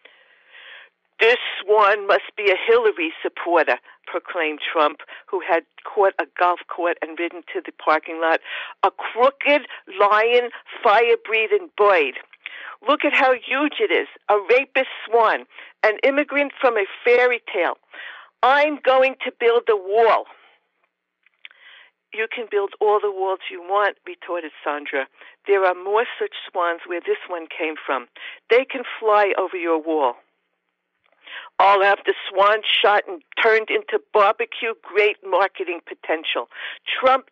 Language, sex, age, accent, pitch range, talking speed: English, female, 60-79, American, 190-315 Hz, 135 wpm